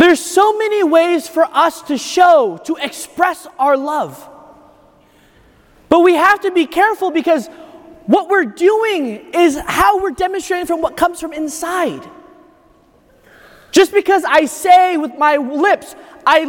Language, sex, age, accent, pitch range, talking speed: English, male, 20-39, American, 290-355 Hz, 140 wpm